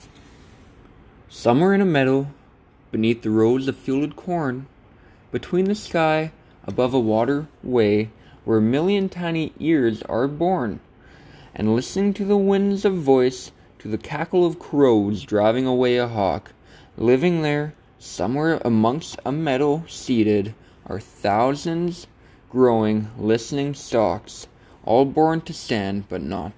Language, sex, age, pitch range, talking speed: English, male, 20-39, 110-165 Hz, 130 wpm